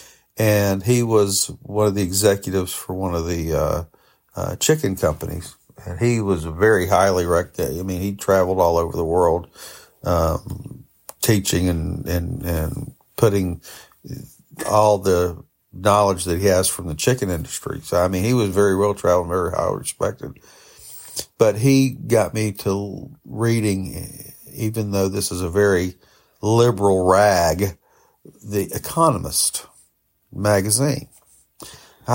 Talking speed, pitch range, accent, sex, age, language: 135 wpm, 90-110 Hz, American, male, 50-69, English